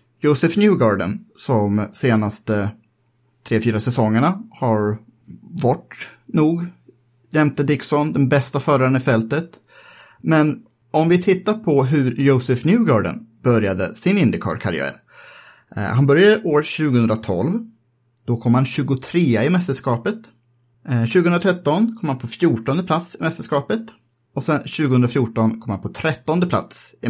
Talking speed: 120 wpm